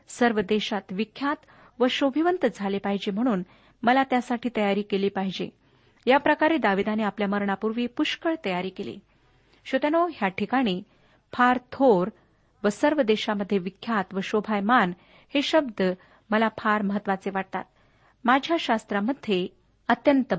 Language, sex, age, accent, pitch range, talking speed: Marathi, female, 40-59, native, 200-270 Hz, 105 wpm